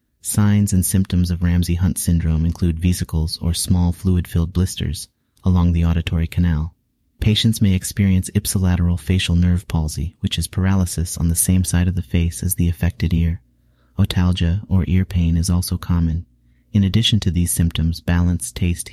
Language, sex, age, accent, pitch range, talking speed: English, male, 30-49, American, 85-95 Hz, 160 wpm